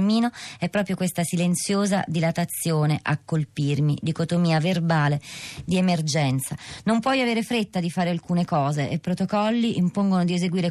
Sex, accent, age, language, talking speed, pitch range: female, native, 30-49, Italian, 135 wpm, 145-180 Hz